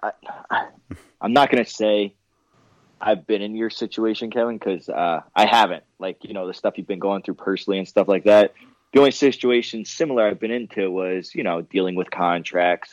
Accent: American